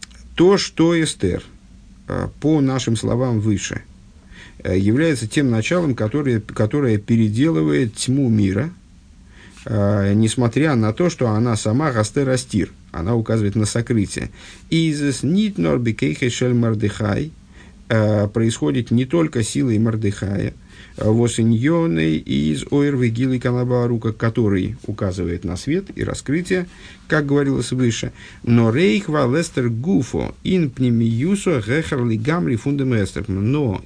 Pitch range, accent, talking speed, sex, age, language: 100-135 Hz, native, 105 wpm, male, 50-69, Russian